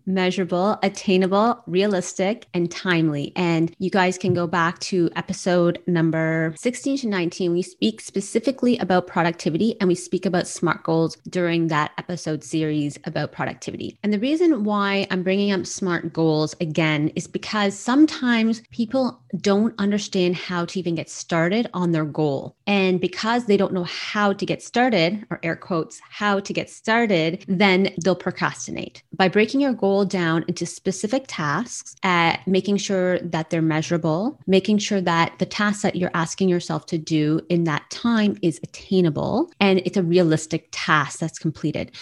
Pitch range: 165-200 Hz